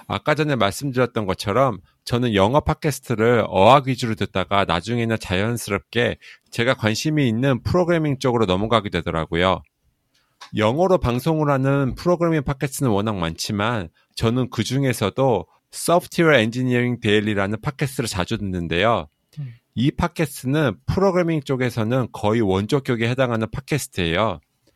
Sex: male